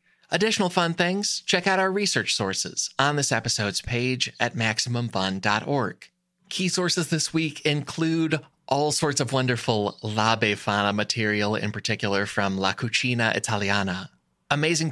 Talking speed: 135 wpm